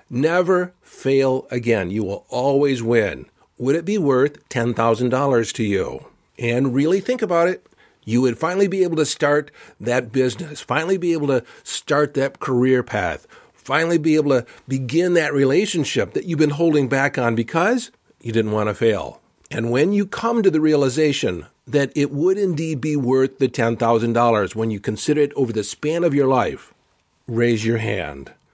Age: 50-69